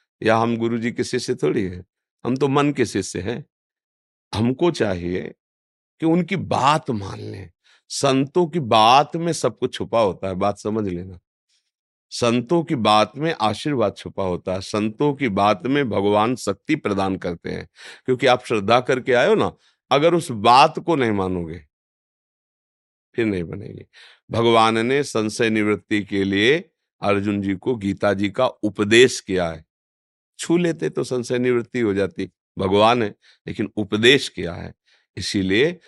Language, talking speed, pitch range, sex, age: Hindi, 155 wpm, 100-135 Hz, male, 50-69